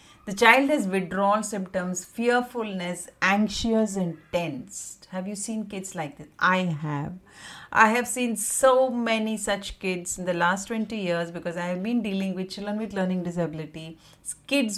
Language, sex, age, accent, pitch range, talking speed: English, female, 30-49, Indian, 175-215 Hz, 160 wpm